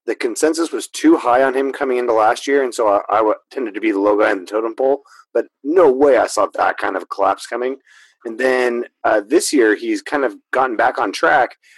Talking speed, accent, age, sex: 240 wpm, American, 30-49, male